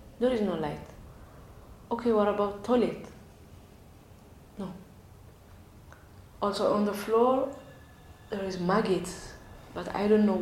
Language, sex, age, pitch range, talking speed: Danish, female, 30-49, 160-200 Hz, 115 wpm